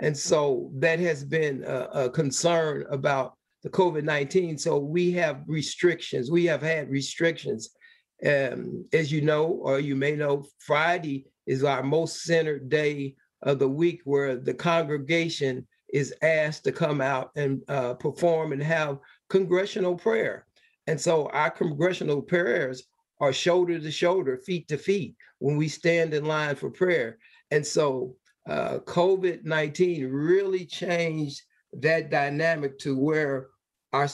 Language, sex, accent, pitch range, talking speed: English, male, American, 140-170 Hz, 150 wpm